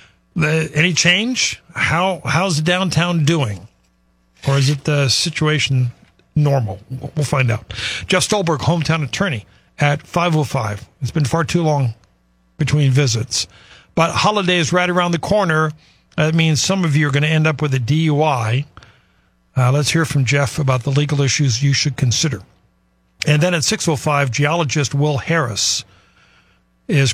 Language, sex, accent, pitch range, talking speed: English, male, American, 130-165 Hz, 160 wpm